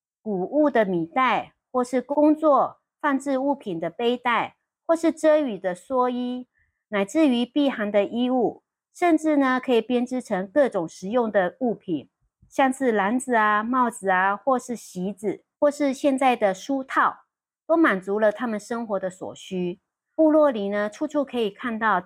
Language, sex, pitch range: Chinese, female, 200-275 Hz